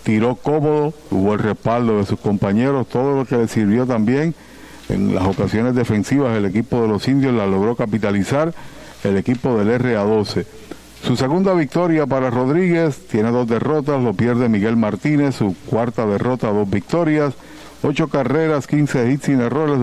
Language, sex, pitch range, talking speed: Spanish, male, 115-145 Hz, 160 wpm